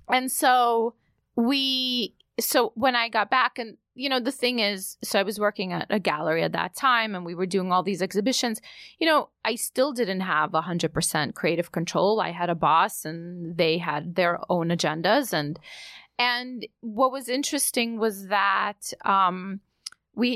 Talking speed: 180 wpm